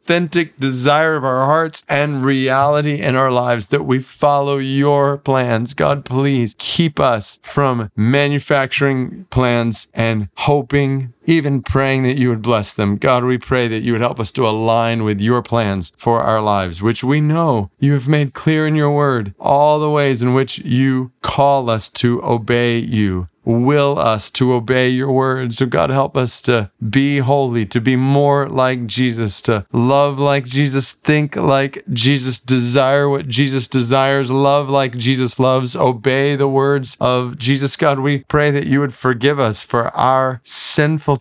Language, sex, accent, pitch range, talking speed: English, male, American, 120-140 Hz, 170 wpm